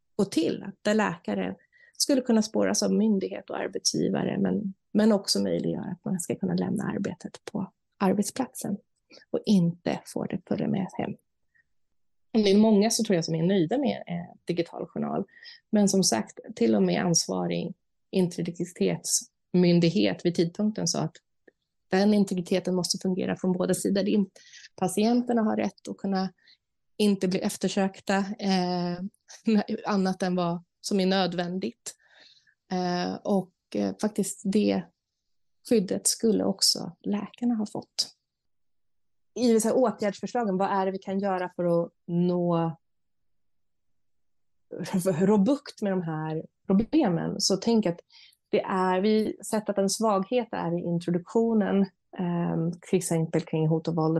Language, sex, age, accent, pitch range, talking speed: Swedish, female, 30-49, native, 175-210 Hz, 135 wpm